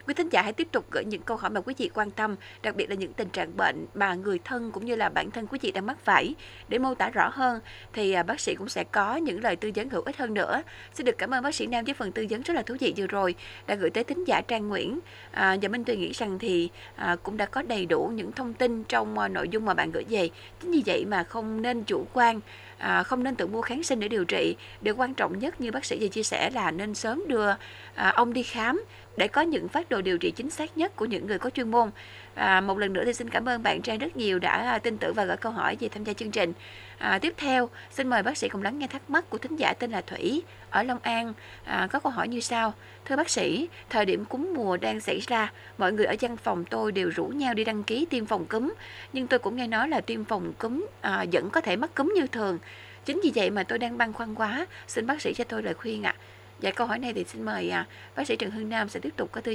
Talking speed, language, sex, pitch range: 280 wpm, Vietnamese, female, 205-260 Hz